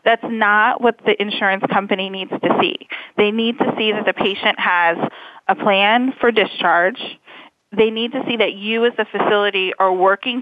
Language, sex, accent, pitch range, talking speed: English, female, American, 200-240 Hz, 185 wpm